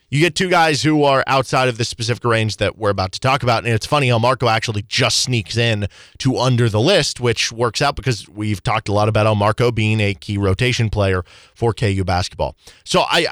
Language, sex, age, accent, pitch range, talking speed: English, male, 20-39, American, 115-155 Hz, 230 wpm